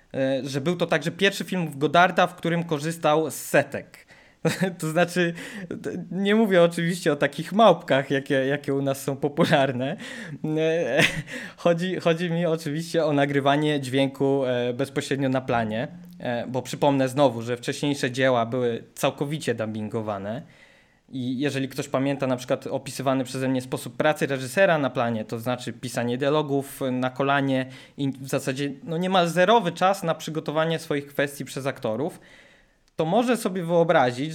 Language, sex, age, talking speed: Polish, male, 20-39, 150 wpm